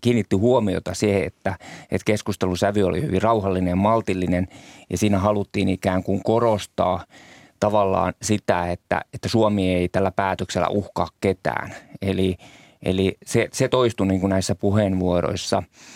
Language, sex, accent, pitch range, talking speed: Finnish, male, native, 95-110 Hz, 130 wpm